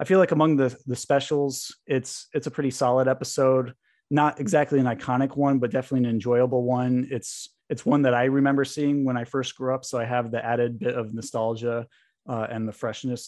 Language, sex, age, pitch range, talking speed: English, male, 20-39, 115-135 Hz, 210 wpm